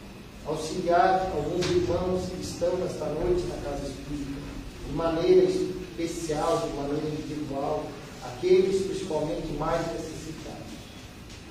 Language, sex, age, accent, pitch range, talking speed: Portuguese, male, 40-59, Brazilian, 145-190 Hz, 105 wpm